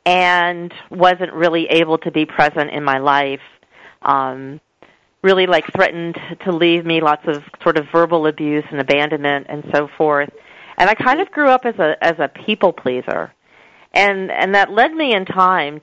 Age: 40-59